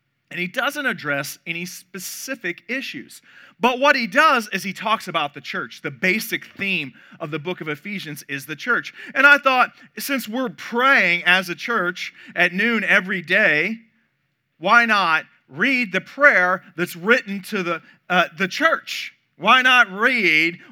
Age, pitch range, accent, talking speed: 40-59, 150-205 Hz, American, 160 wpm